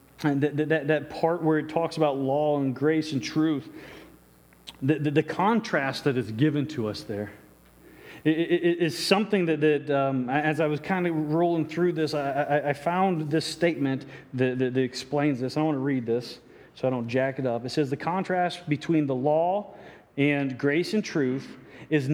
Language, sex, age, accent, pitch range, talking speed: English, male, 40-59, American, 130-175 Hz, 170 wpm